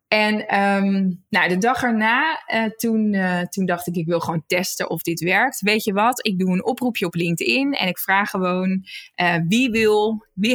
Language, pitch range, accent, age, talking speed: Dutch, 180-235 Hz, Dutch, 20-39, 180 wpm